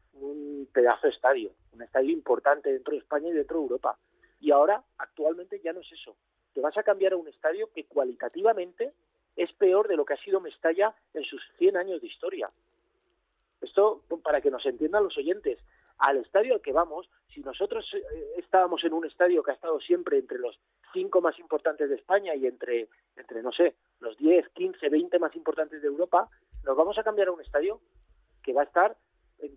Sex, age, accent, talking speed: male, 40-59, Spanish, 200 wpm